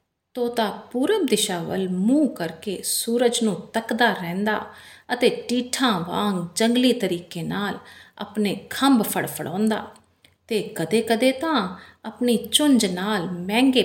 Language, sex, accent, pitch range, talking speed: English, female, Indian, 175-245 Hz, 115 wpm